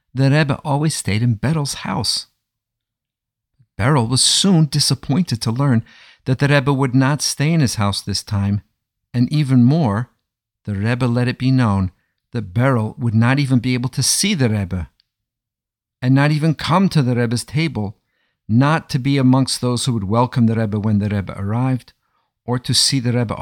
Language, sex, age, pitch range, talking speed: English, male, 50-69, 105-130 Hz, 180 wpm